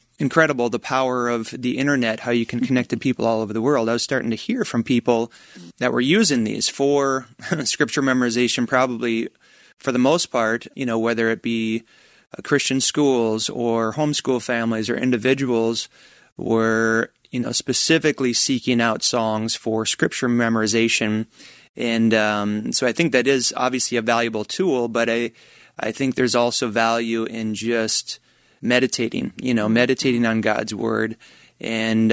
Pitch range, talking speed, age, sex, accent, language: 115-125 Hz, 160 wpm, 30-49, male, American, English